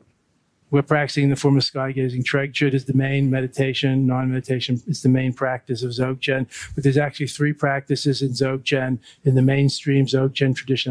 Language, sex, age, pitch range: English, male, 50-69, 125-135 Hz